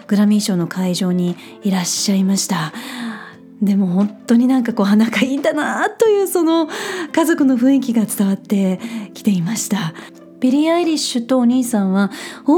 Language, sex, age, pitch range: Japanese, female, 30-49, 200-285 Hz